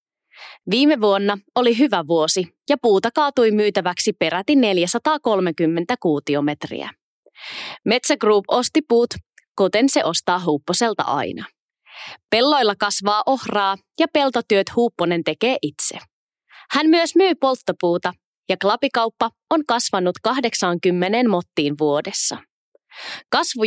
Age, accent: 20-39, native